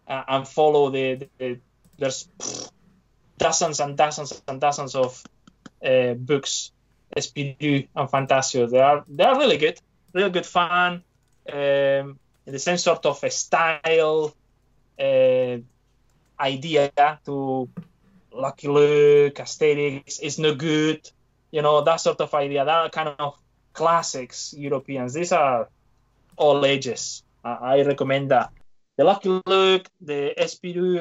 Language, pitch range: English, 135-170 Hz